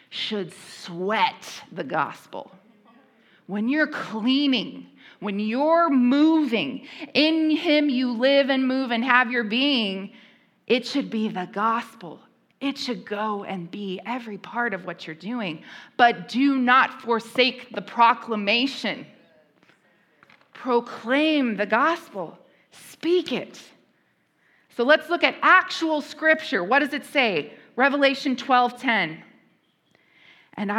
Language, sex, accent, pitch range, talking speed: English, female, American, 220-285 Hz, 115 wpm